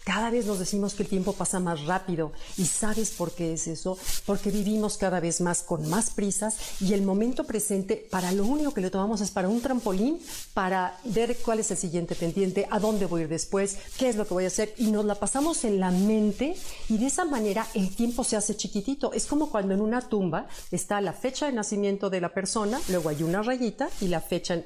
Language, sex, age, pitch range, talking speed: Spanish, female, 50-69, 180-225 Hz, 230 wpm